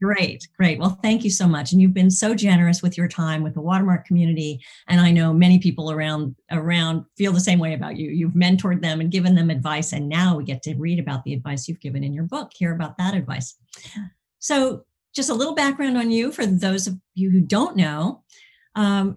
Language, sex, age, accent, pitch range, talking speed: English, female, 50-69, American, 155-195 Hz, 225 wpm